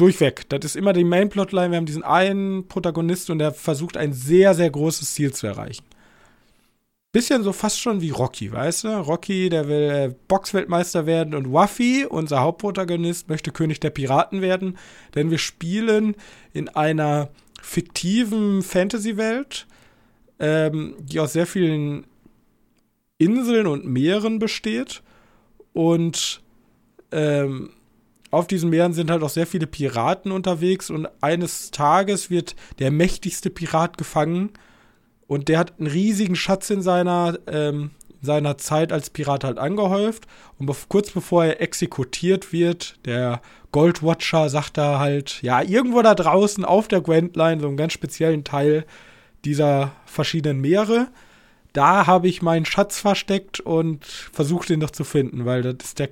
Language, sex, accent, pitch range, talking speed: German, male, German, 150-190 Hz, 150 wpm